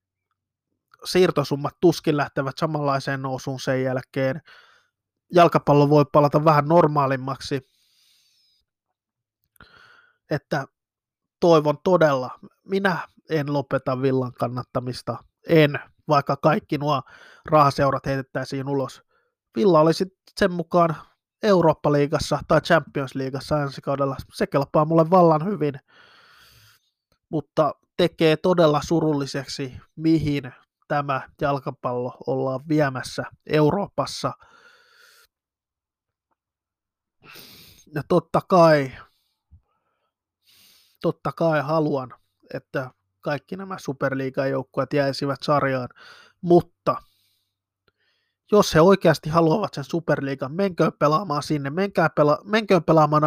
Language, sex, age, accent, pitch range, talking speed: Finnish, male, 20-39, native, 135-170 Hz, 90 wpm